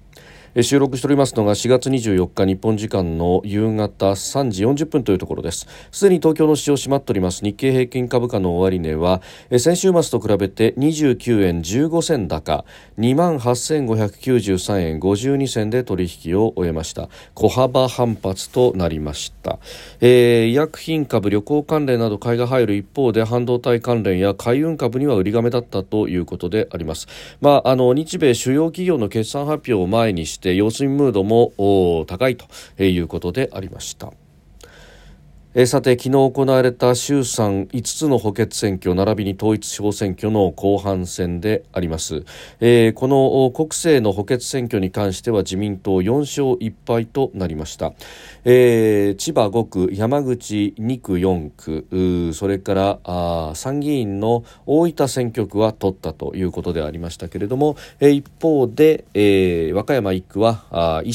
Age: 40-59